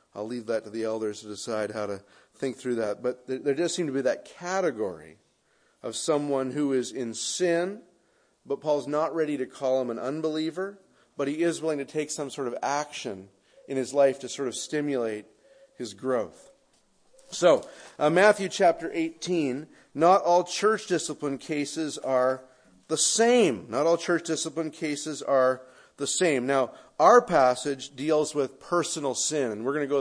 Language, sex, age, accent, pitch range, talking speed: English, male, 40-59, American, 130-170 Hz, 175 wpm